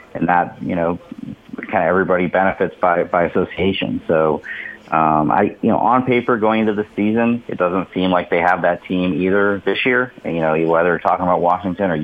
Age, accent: 30-49, American